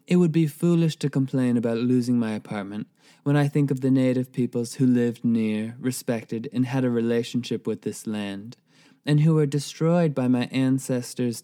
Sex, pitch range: male, 115-145 Hz